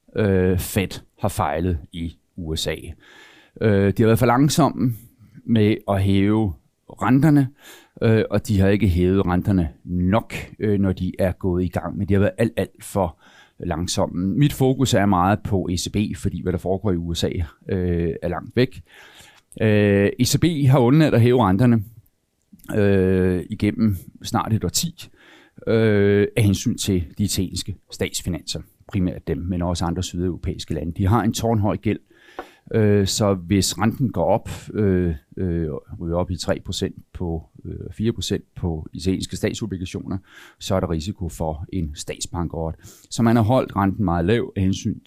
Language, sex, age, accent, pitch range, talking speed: Danish, male, 40-59, native, 90-110 Hz, 145 wpm